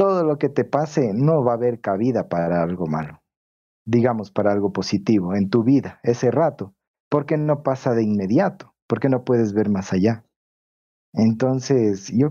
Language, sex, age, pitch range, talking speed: Spanish, male, 40-59, 105-140 Hz, 170 wpm